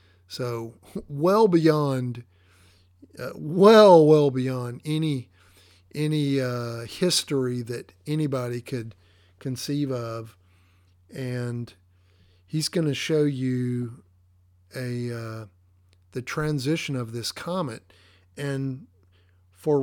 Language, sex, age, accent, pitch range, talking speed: English, male, 50-69, American, 95-160 Hz, 95 wpm